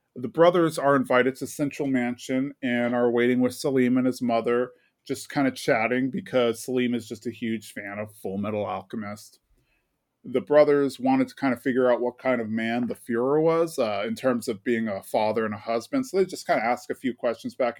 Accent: American